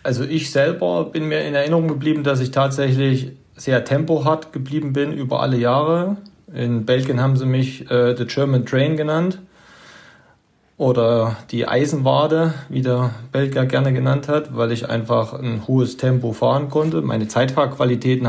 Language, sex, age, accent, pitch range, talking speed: German, male, 40-59, German, 115-135 Hz, 155 wpm